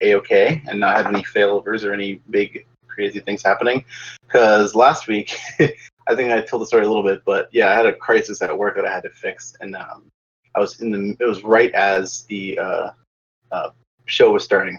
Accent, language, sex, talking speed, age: American, English, male, 215 wpm, 20-39